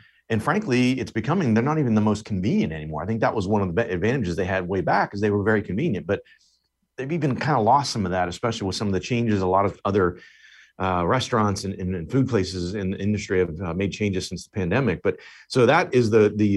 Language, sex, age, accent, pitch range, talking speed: English, male, 40-59, American, 95-125 Hz, 255 wpm